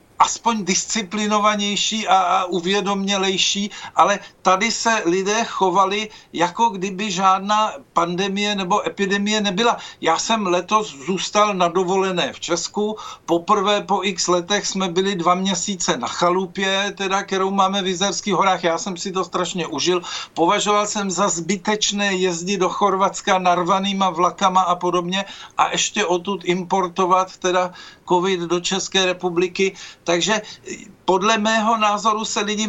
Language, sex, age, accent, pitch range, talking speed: Czech, male, 50-69, native, 185-210 Hz, 130 wpm